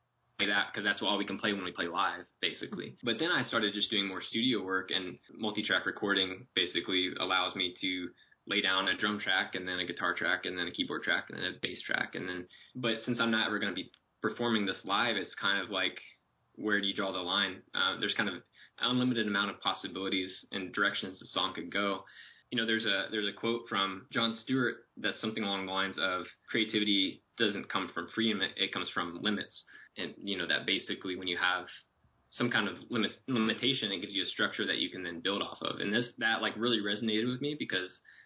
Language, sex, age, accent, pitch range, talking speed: English, male, 20-39, American, 95-115 Hz, 225 wpm